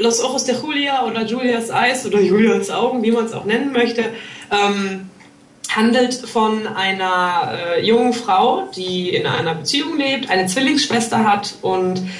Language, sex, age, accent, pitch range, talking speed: German, female, 20-39, German, 190-230 Hz, 155 wpm